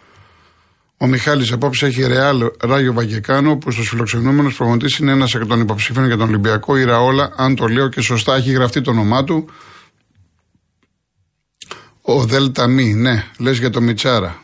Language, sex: Greek, male